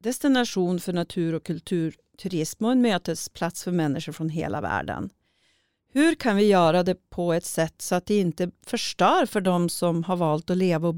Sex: female